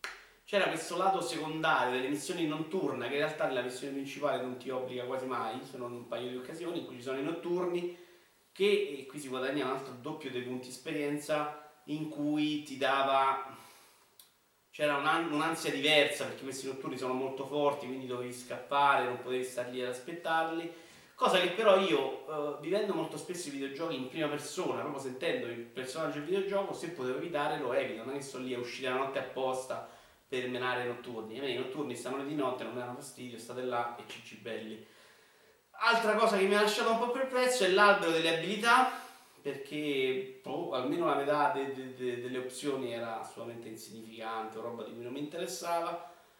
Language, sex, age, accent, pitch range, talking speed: Italian, male, 30-49, native, 130-175 Hz, 190 wpm